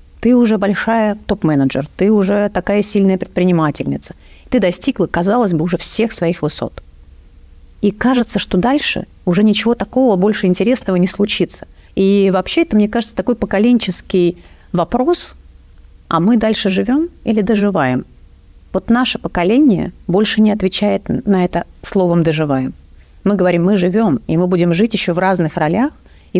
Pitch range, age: 170-220 Hz, 30-49